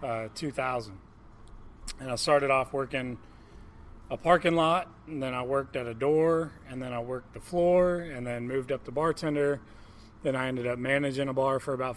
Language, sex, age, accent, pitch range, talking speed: English, male, 30-49, American, 115-145 Hz, 190 wpm